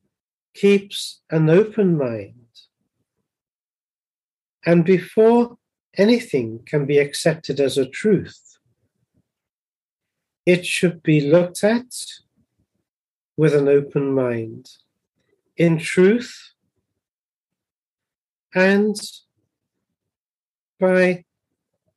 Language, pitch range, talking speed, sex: English, 140-185 Hz, 70 wpm, male